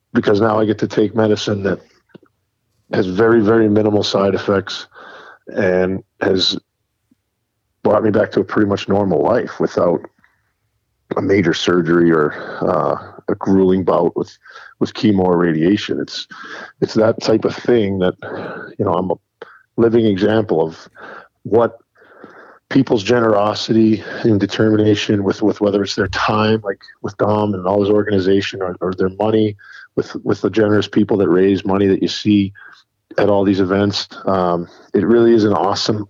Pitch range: 95-110 Hz